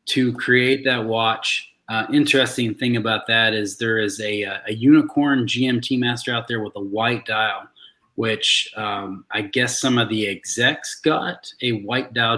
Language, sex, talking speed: English, male, 170 wpm